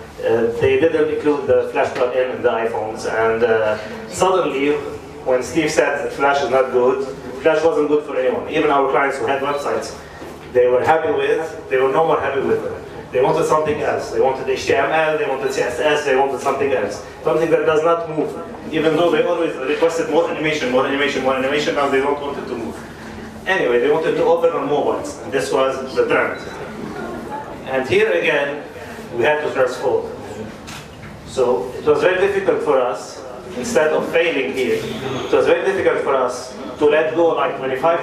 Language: English